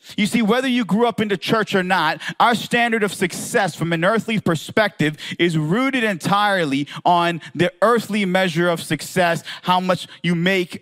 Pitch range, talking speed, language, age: 170-220 Hz, 175 wpm, English, 30-49